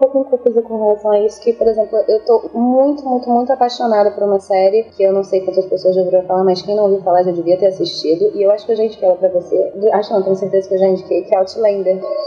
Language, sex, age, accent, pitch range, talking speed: Portuguese, female, 20-39, Brazilian, 205-275 Hz, 285 wpm